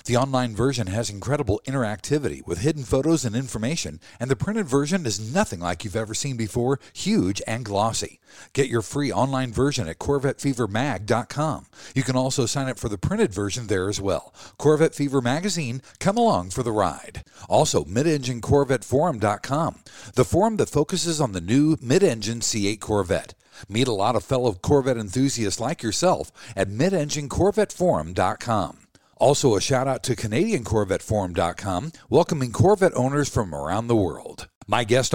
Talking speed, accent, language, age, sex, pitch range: 150 wpm, American, English, 50-69, male, 110-155 Hz